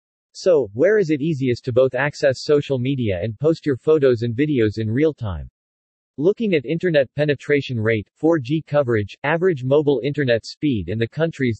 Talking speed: 170 wpm